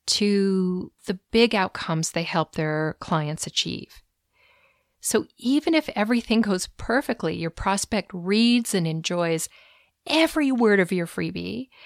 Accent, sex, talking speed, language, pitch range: American, female, 125 wpm, English, 170-235 Hz